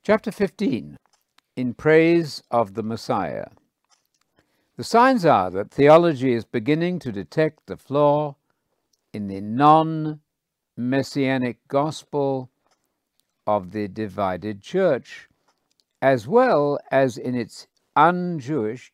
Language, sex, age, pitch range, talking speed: English, male, 60-79, 120-170 Hz, 100 wpm